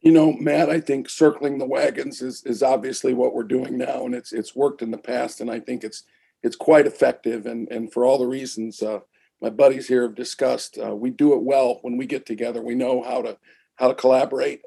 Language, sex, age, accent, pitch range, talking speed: English, male, 50-69, American, 130-185 Hz, 235 wpm